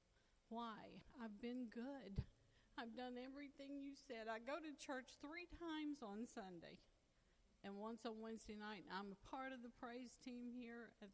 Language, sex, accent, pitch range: English, female, American, 190-245 Hz